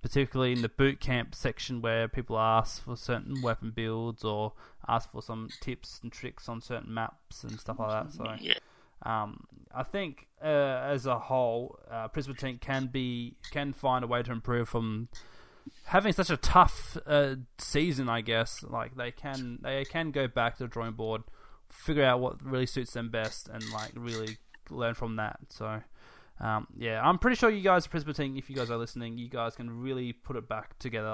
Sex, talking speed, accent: male, 195 wpm, Australian